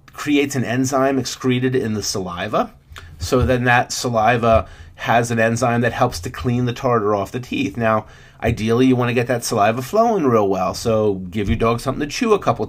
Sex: male